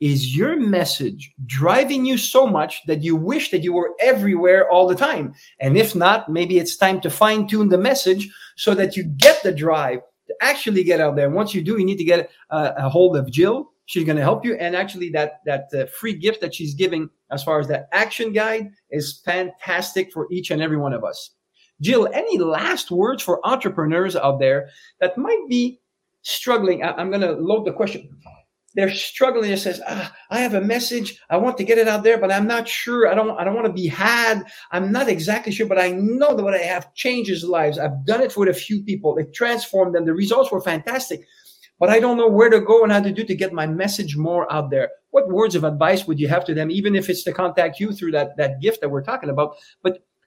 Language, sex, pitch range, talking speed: English, male, 160-220 Hz, 230 wpm